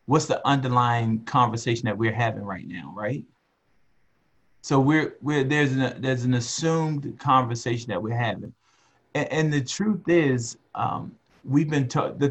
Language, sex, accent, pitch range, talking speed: English, male, American, 115-135 Hz, 155 wpm